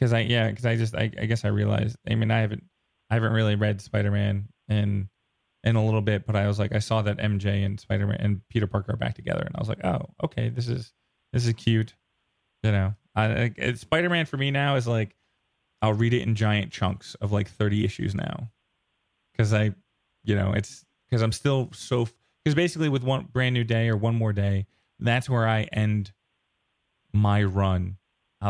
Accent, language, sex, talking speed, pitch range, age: American, English, male, 215 wpm, 105-125 Hz, 20-39